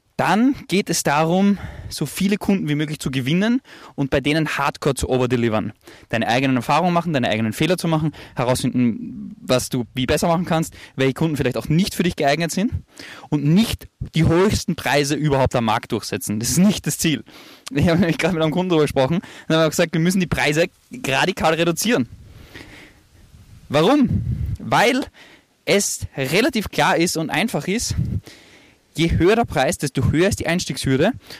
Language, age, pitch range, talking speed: German, 20-39, 130-175 Hz, 180 wpm